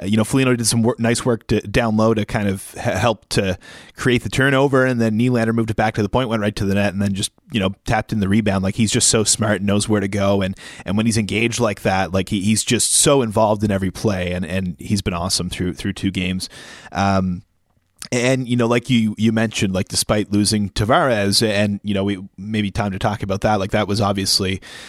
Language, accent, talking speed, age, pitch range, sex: English, American, 250 wpm, 30-49, 100-120 Hz, male